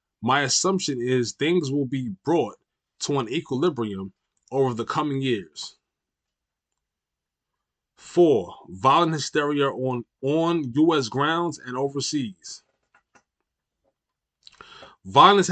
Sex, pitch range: male, 125-160 Hz